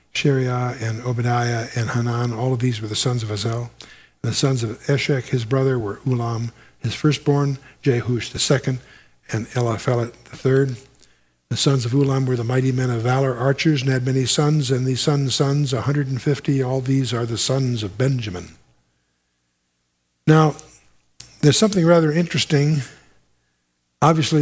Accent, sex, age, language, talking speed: American, male, 60-79, English, 165 wpm